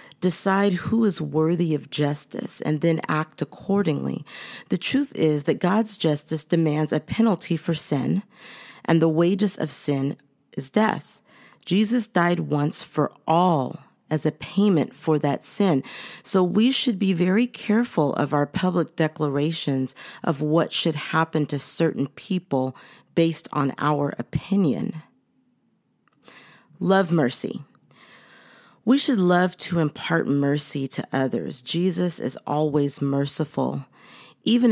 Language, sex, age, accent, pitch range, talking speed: English, female, 40-59, American, 145-185 Hz, 130 wpm